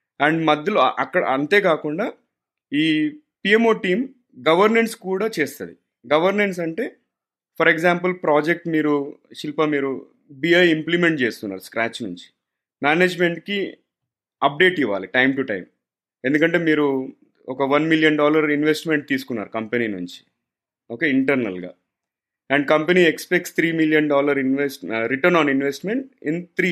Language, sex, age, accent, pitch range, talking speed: Telugu, male, 30-49, native, 135-180 Hz, 120 wpm